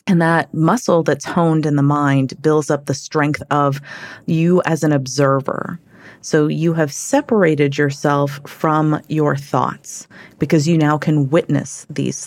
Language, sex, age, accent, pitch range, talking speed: English, female, 30-49, American, 140-165 Hz, 150 wpm